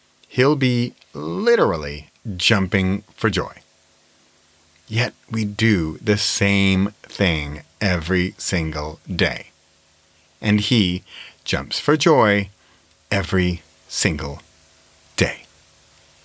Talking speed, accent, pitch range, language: 85 wpm, American, 80-130 Hz, English